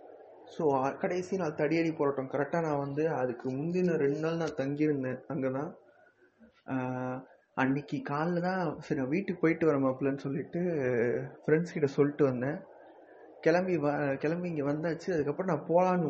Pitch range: 135-165 Hz